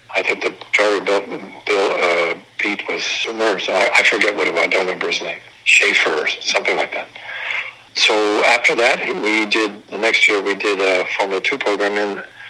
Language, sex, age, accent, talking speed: English, male, 60-79, American, 180 wpm